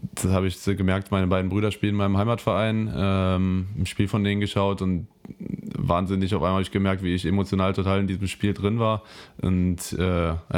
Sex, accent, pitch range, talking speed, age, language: male, German, 90-100 Hz, 200 wpm, 20-39, German